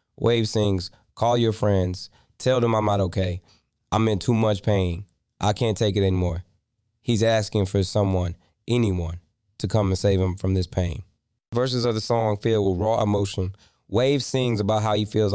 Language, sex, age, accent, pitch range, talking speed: English, male, 20-39, American, 95-115 Hz, 185 wpm